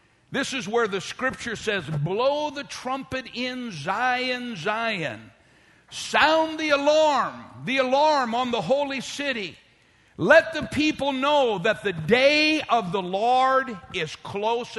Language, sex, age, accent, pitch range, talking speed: English, male, 60-79, American, 235-290 Hz, 135 wpm